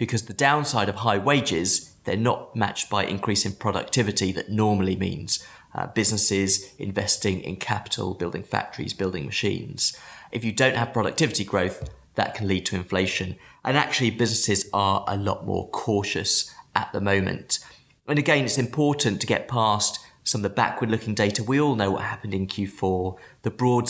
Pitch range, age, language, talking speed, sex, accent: 95-115 Hz, 30-49, English, 170 wpm, male, British